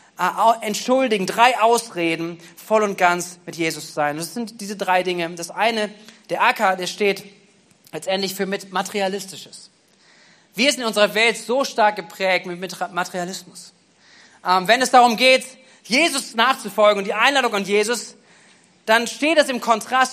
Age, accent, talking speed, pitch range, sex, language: 40-59, German, 150 wpm, 200-250 Hz, male, German